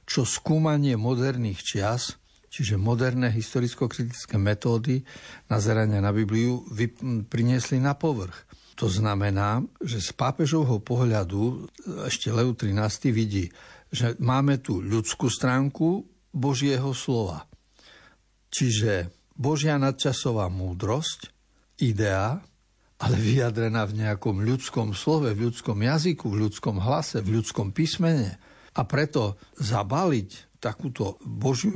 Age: 70-89